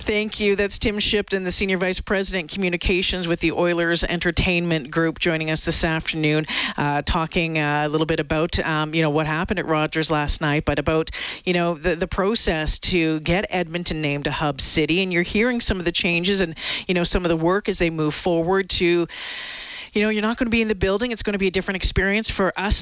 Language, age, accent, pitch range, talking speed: English, 40-59, American, 165-205 Hz, 225 wpm